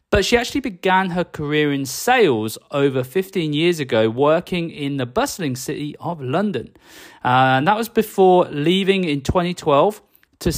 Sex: male